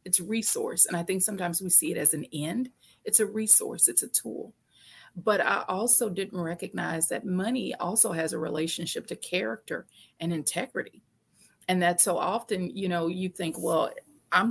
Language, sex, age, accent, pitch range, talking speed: English, female, 30-49, American, 170-200 Hz, 180 wpm